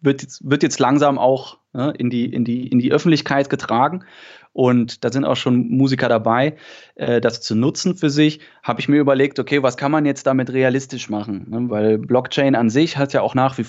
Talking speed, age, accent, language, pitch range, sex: 195 wpm, 20-39, German, German, 120-140 Hz, male